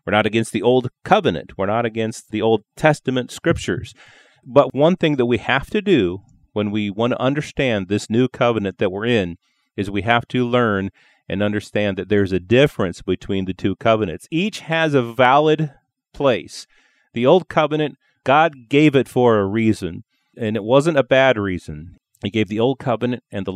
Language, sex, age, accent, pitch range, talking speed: English, male, 40-59, American, 100-125 Hz, 190 wpm